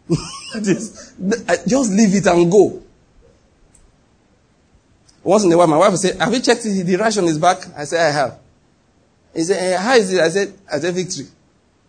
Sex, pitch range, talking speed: male, 165-220 Hz, 165 wpm